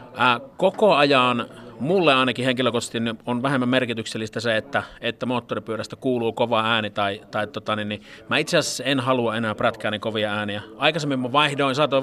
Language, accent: Finnish, native